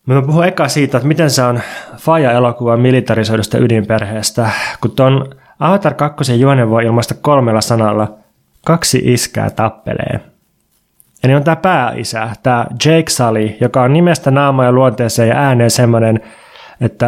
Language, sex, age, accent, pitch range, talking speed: Finnish, male, 20-39, native, 115-145 Hz, 150 wpm